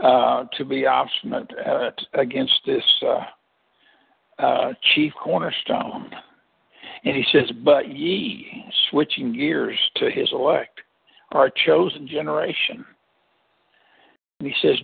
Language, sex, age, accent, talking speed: English, male, 60-79, American, 110 wpm